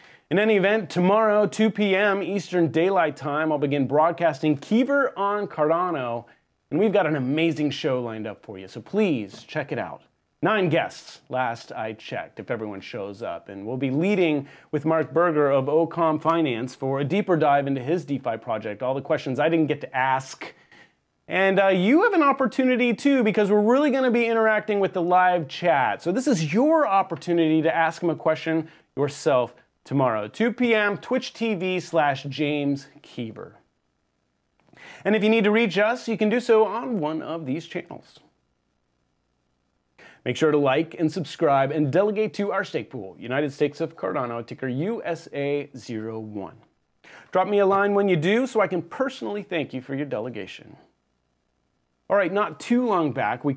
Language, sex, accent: English, male, American